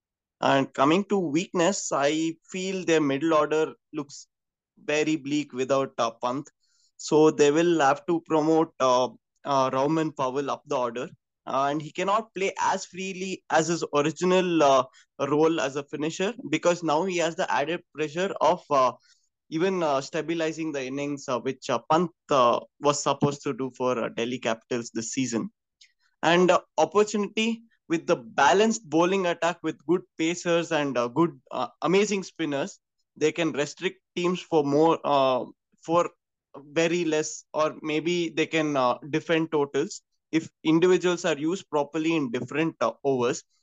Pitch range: 140-170 Hz